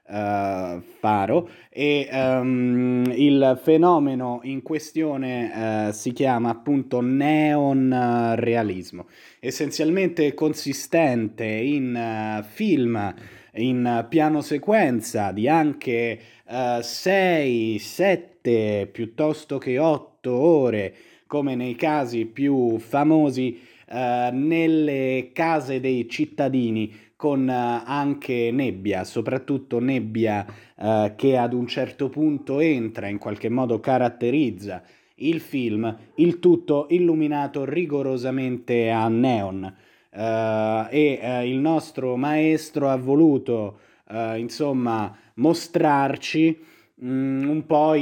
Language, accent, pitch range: Italian, native, 115-145 Hz